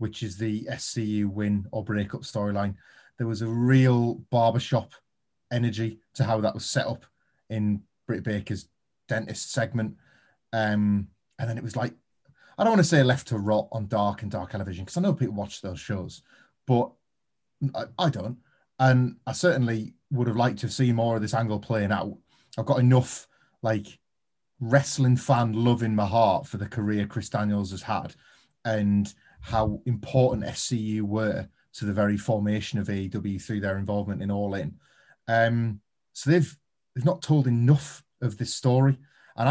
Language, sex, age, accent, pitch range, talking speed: English, male, 30-49, British, 105-130 Hz, 175 wpm